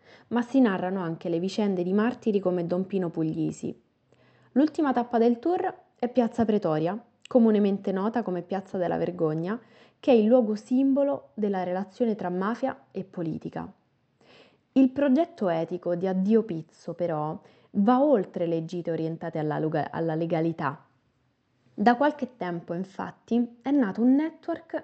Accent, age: native, 20-39